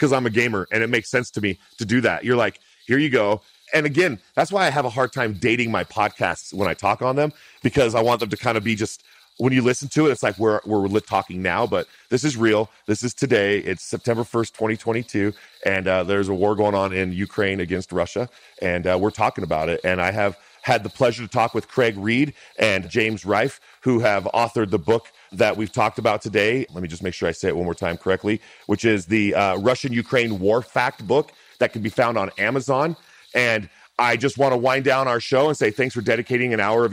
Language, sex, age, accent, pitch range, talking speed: English, male, 40-59, American, 105-125 Hz, 245 wpm